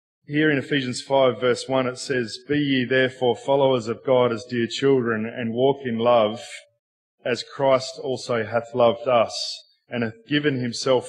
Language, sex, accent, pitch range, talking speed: English, male, Australian, 120-155 Hz, 170 wpm